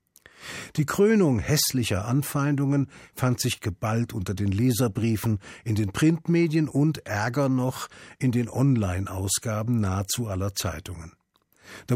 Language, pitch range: German, 105-130 Hz